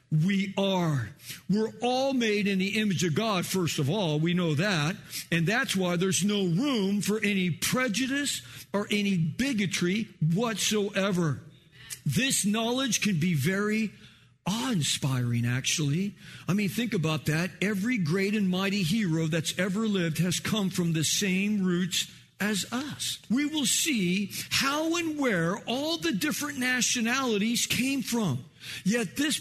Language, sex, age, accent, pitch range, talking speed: English, male, 50-69, American, 160-215 Hz, 145 wpm